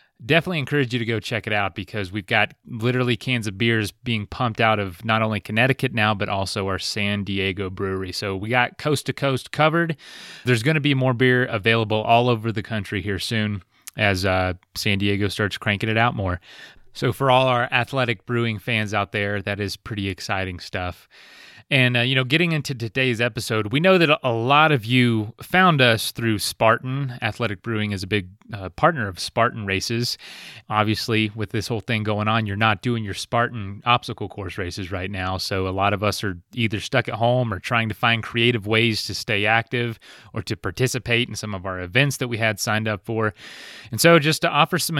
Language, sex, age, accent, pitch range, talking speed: English, male, 30-49, American, 105-125 Hz, 210 wpm